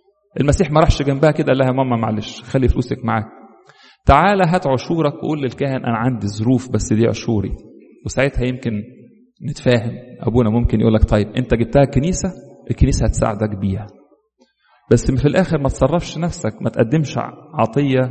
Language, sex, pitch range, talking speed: English, male, 125-185 Hz, 150 wpm